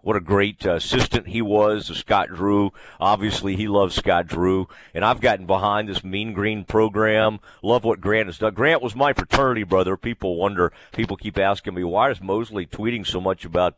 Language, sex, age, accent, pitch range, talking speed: English, male, 50-69, American, 90-120 Hz, 195 wpm